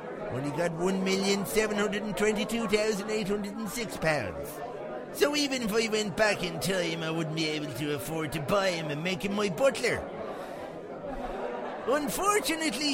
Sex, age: male, 50-69